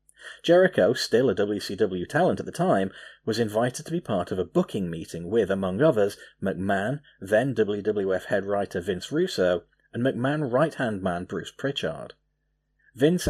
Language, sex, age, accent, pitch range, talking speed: English, male, 30-49, British, 100-150 Hz, 155 wpm